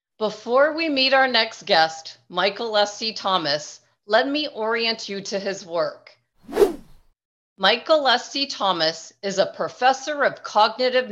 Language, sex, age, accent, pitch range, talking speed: English, female, 40-59, American, 185-235 Hz, 130 wpm